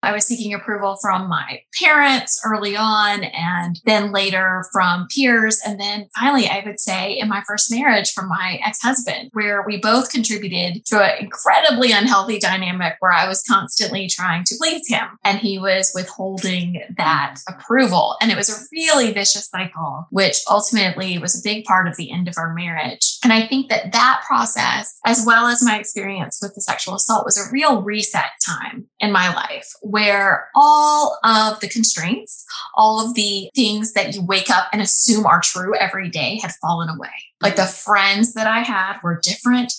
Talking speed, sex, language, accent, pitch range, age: 185 wpm, female, English, American, 185-230 Hz, 20-39